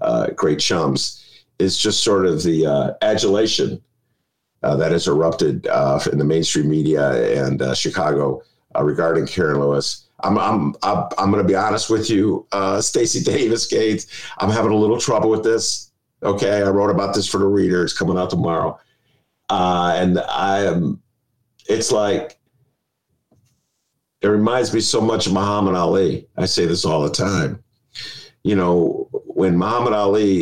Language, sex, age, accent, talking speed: English, male, 50-69, American, 165 wpm